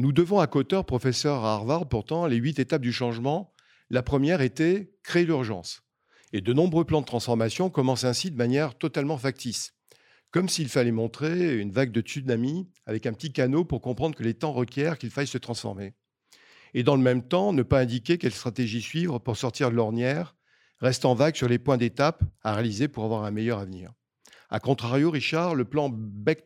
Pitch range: 115-145 Hz